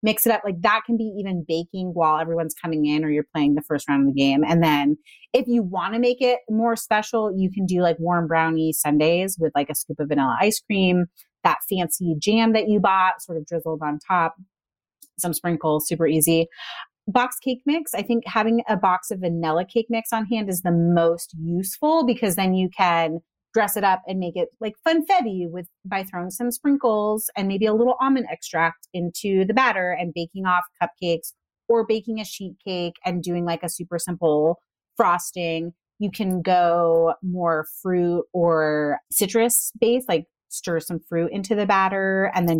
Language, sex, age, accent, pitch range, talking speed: English, female, 30-49, American, 165-220 Hz, 195 wpm